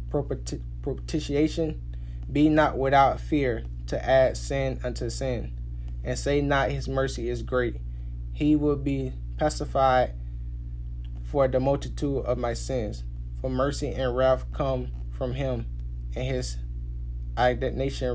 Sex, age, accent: male, 10-29, American